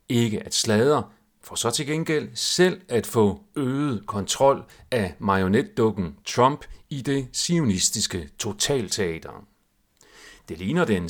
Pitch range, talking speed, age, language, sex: 95-140 Hz, 120 wpm, 40-59, Danish, male